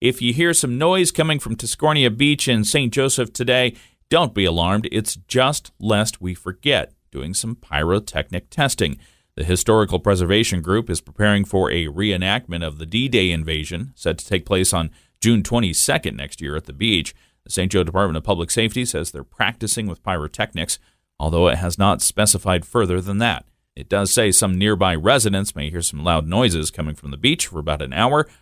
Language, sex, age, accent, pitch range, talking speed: English, male, 40-59, American, 90-120 Hz, 190 wpm